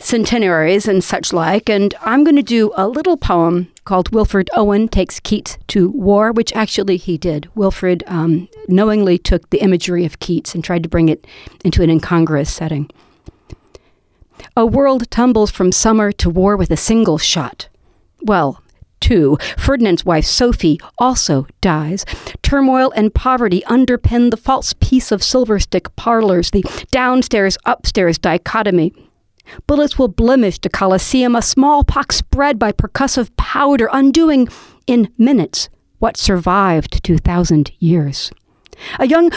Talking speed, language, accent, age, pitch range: 145 wpm, English, American, 50-69, 175-250 Hz